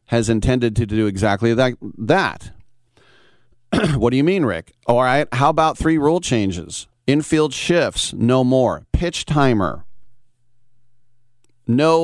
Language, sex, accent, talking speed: English, male, American, 125 wpm